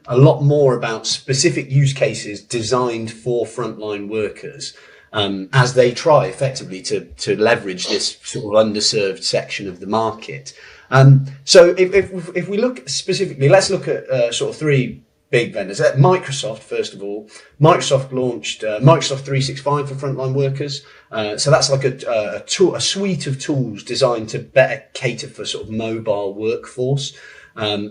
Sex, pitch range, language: male, 115-140 Hz, English